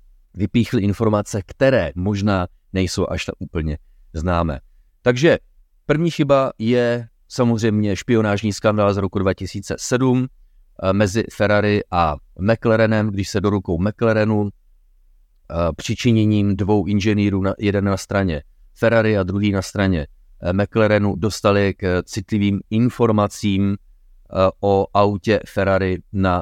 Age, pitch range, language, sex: 30-49, 90-110 Hz, Czech, male